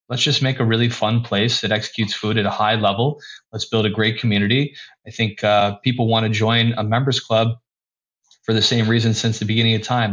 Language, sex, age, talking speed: English, male, 20-39, 225 wpm